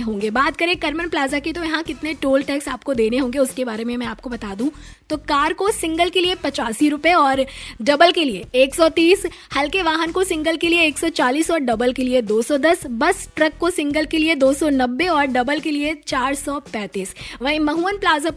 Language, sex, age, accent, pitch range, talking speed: Hindi, female, 20-39, native, 250-320 Hz, 225 wpm